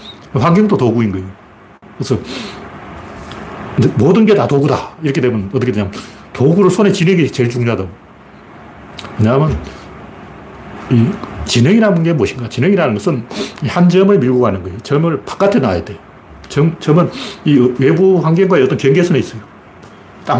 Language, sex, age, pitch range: Korean, male, 40-59, 120-185 Hz